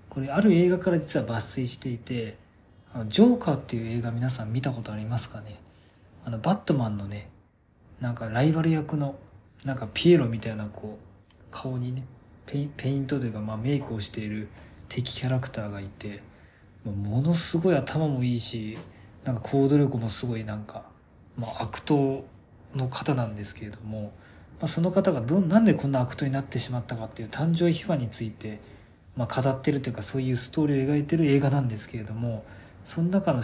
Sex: male